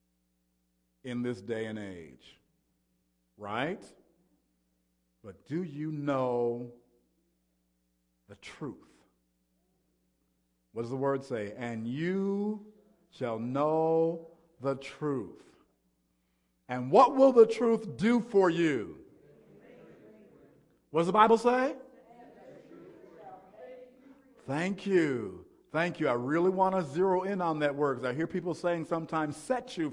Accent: American